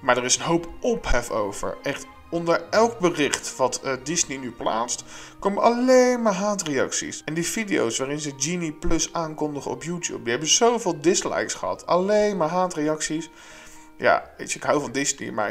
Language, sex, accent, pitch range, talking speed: Dutch, male, Dutch, 130-175 Hz, 180 wpm